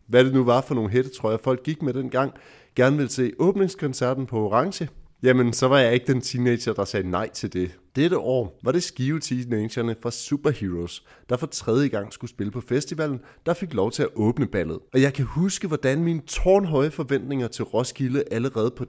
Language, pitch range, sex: Danish, 110-140 Hz, male